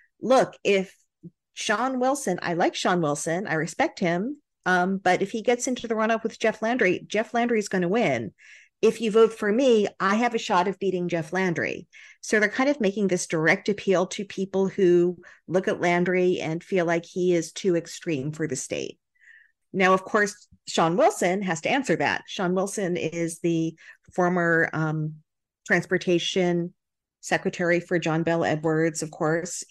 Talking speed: 180 wpm